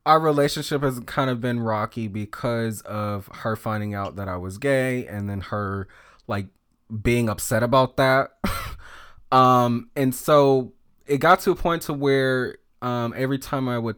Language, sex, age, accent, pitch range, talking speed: English, male, 20-39, American, 110-135 Hz, 165 wpm